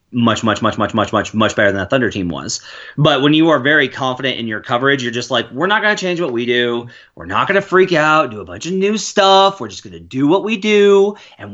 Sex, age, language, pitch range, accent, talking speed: male, 30-49, English, 120-160 Hz, American, 280 wpm